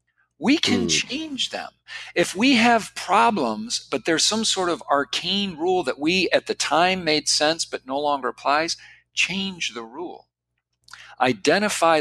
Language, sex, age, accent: English, male, 50-69, American